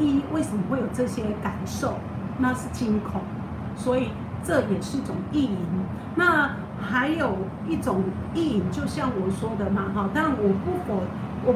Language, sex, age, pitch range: Chinese, female, 50-69, 200-280 Hz